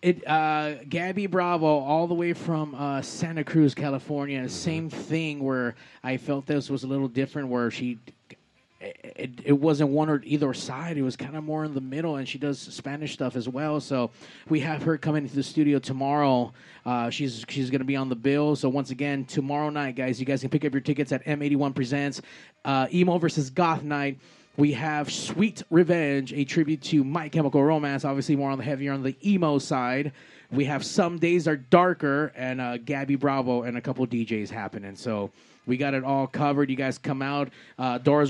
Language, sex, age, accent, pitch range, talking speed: English, male, 20-39, American, 135-155 Hz, 205 wpm